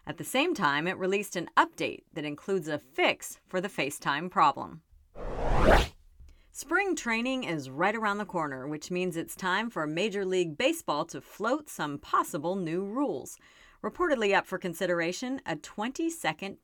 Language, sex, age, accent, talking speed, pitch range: English, female, 40-59, American, 155 wpm, 165-245 Hz